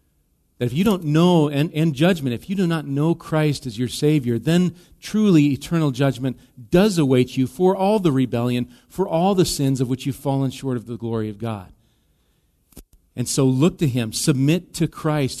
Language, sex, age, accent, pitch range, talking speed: English, male, 40-59, American, 120-155 Hz, 195 wpm